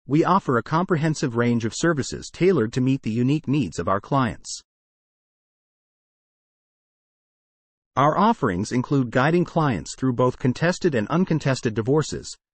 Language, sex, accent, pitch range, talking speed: English, male, American, 115-160 Hz, 130 wpm